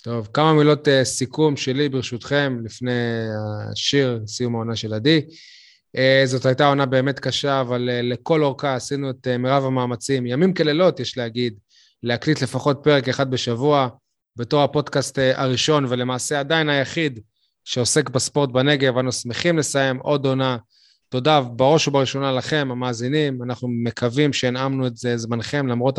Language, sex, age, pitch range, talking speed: Hebrew, male, 20-39, 125-145 Hz, 150 wpm